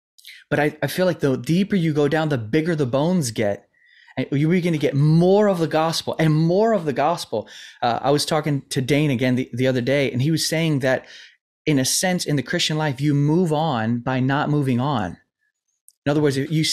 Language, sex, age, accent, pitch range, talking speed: English, male, 20-39, American, 125-155 Hz, 225 wpm